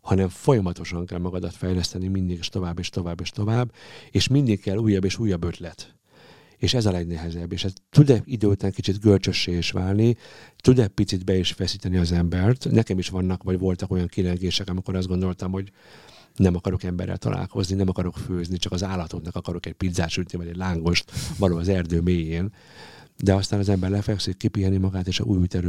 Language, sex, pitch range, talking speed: Hungarian, male, 90-105 Hz, 185 wpm